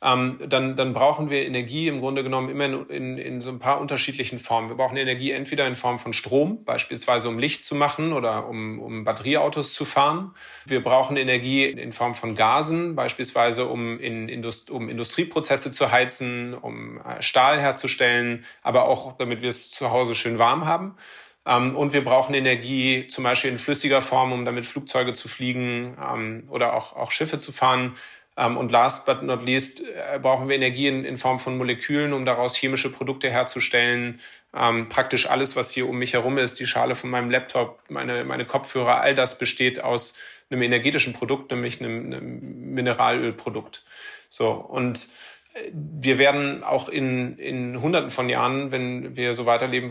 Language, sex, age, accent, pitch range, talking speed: German, male, 30-49, German, 120-135 Hz, 170 wpm